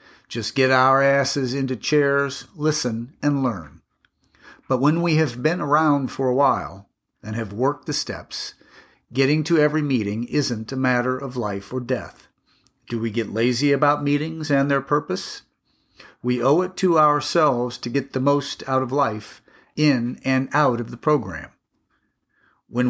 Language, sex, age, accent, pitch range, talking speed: English, male, 50-69, American, 120-145 Hz, 160 wpm